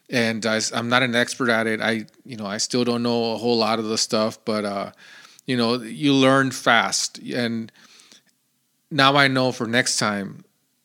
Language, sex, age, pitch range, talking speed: English, male, 30-49, 115-130 Hz, 190 wpm